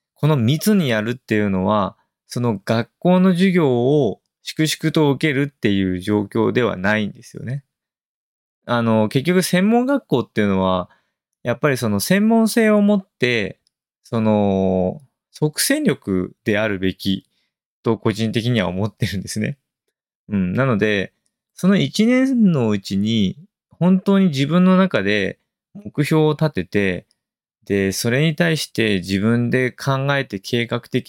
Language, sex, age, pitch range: Japanese, male, 20-39, 100-155 Hz